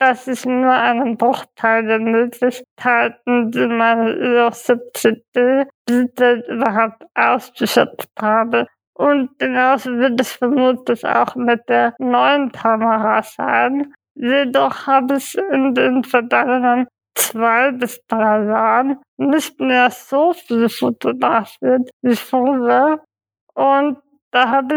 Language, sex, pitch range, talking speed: German, female, 235-275 Hz, 105 wpm